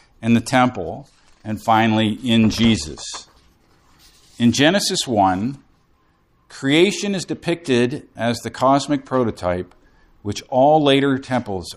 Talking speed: 105 wpm